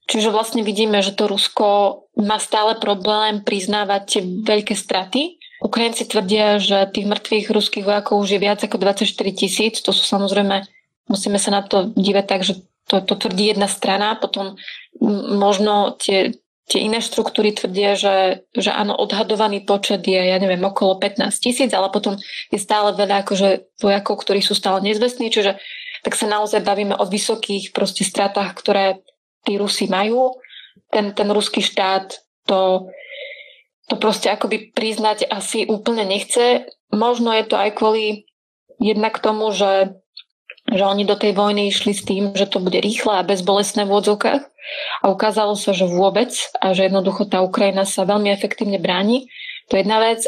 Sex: female